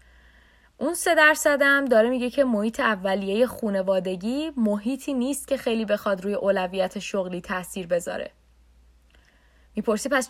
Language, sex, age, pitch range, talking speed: Persian, female, 20-39, 190-280 Hz, 120 wpm